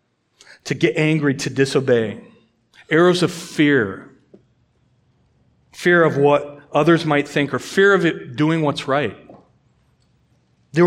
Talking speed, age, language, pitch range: 120 wpm, 30-49, English, 125-150 Hz